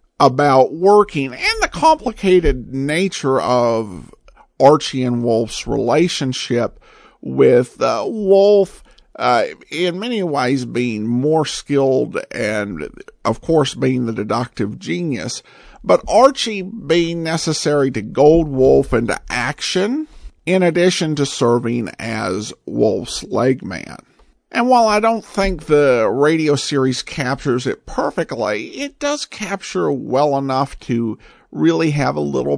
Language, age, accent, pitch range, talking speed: English, 50-69, American, 125-185 Hz, 120 wpm